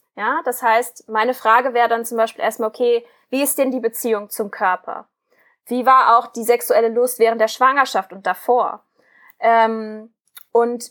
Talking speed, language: 170 wpm, German